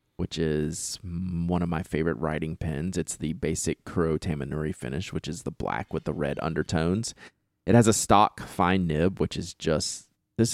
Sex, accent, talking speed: male, American, 180 wpm